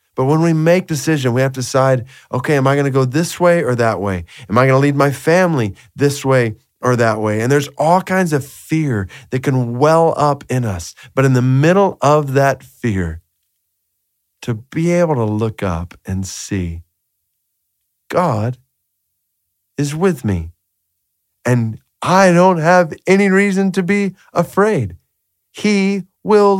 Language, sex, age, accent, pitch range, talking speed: English, male, 40-59, American, 115-170 Hz, 165 wpm